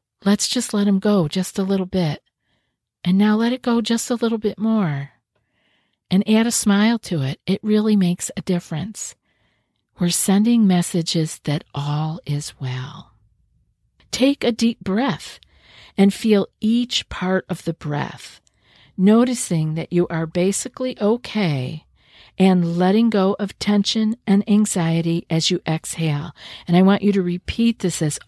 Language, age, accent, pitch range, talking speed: English, 50-69, American, 170-215 Hz, 155 wpm